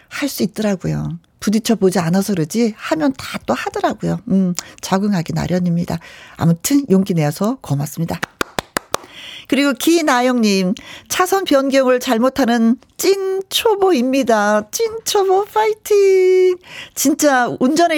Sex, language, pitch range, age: female, Korean, 185-310 Hz, 40-59